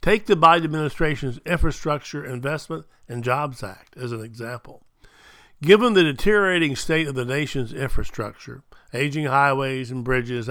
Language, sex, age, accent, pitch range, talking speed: English, male, 60-79, American, 125-160 Hz, 135 wpm